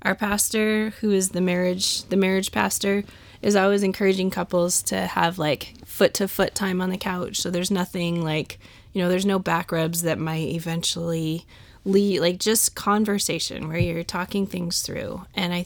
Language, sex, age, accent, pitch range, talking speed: English, female, 20-39, American, 170-200 Hz, 175 wpm